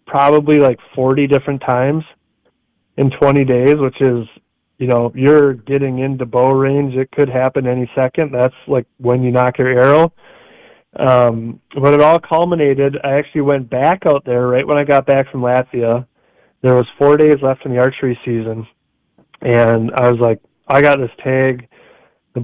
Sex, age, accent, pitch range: male, 30-49, American, 125-145 Hz